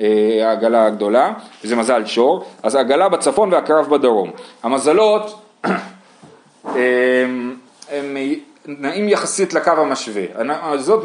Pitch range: 115-180 Hz